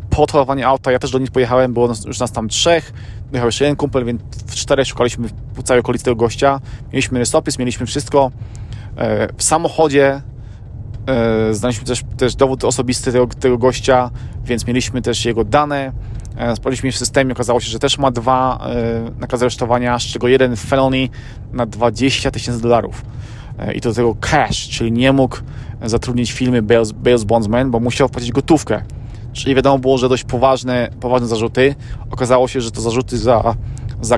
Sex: male